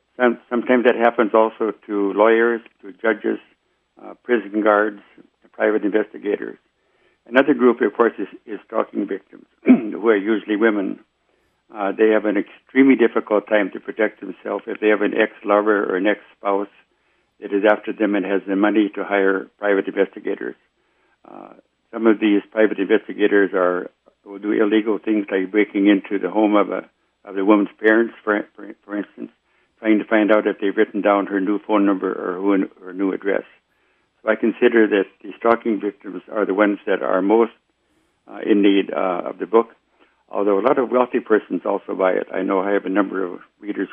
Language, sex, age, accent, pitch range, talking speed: English, male, 60-79, American, 100-110 Hz, 185 wpm